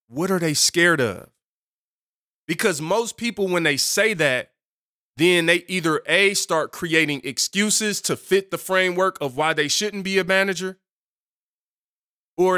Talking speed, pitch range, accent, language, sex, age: 150 wpm, 140-190 Hz, American, English, male, 20-39